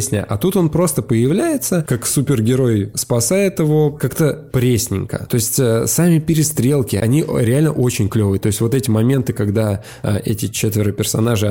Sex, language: male, Russian